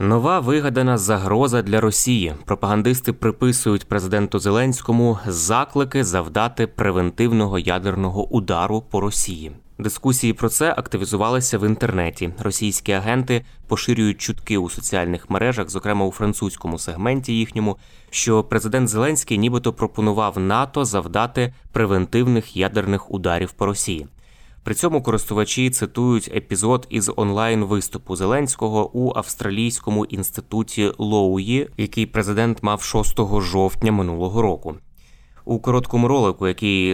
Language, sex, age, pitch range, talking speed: Ukrainian, male, 20-39, 95-115 Hz, 110 wpm